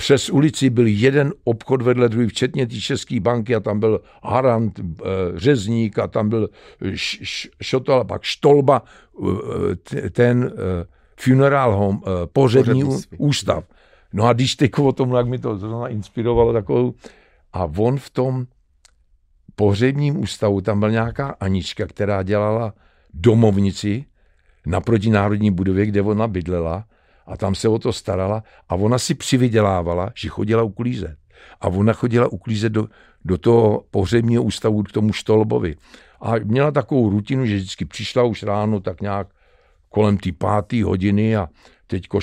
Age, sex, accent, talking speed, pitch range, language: 60-79, male, native, 140 wpm, 95-120 Hz, Czech